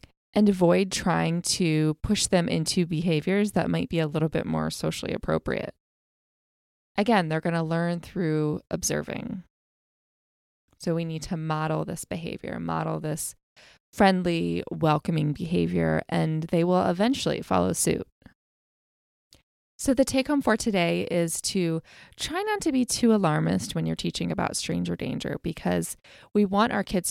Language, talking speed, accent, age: English, 145 wpm, American, 20-39